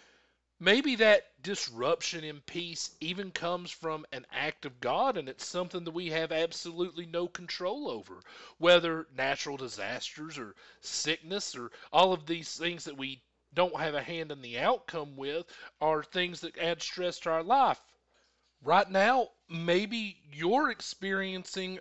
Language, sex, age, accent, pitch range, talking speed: English, male, 40-59, American, 150-200 Hz, 150 wpm